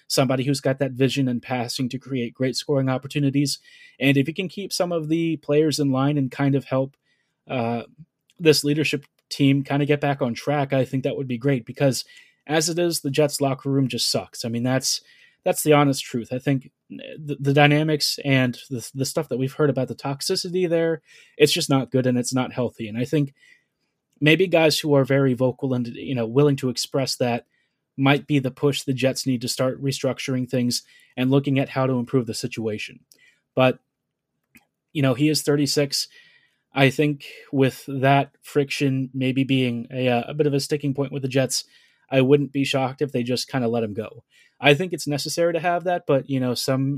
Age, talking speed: 20-39, 210 wpm